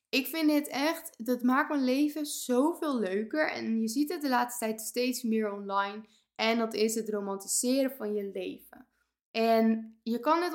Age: 10-29